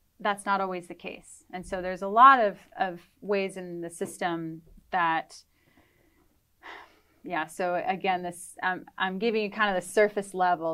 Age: 30-49